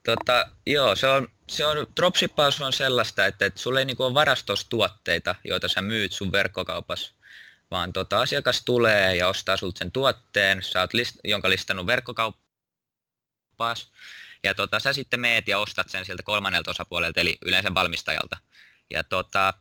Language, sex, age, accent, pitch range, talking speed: Finnish, male, 20-39, native, 90-115 Hz, 155 wpm